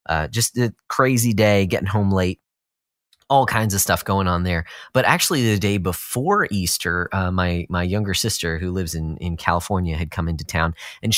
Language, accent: English, American